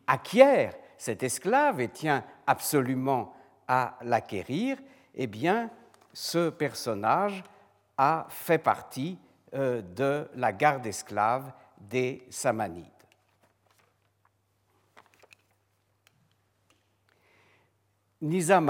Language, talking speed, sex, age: French, 65 wpm, male, 60-79